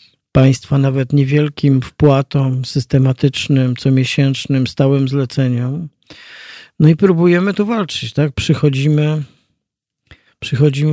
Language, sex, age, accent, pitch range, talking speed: Polish, male, 50-69, native, 135-175 Hz, 90 wpm